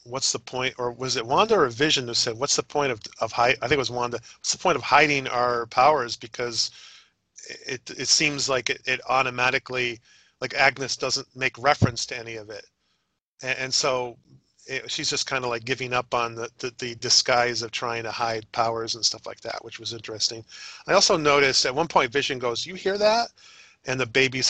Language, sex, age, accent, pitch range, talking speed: English, male, 40-59, American, 115-135 Hz, 220 wpm